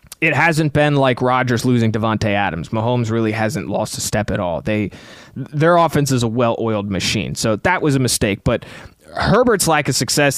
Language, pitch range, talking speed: English, 115-150 Hz, 190 wpm